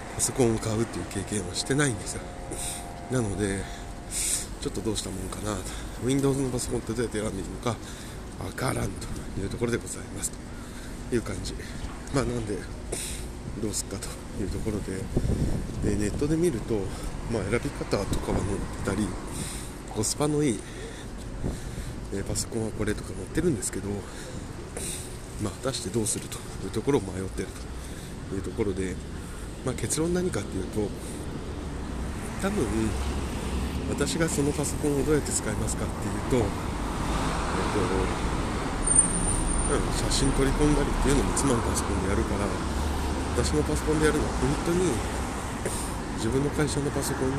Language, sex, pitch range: Japanese, male, 90-120 Hz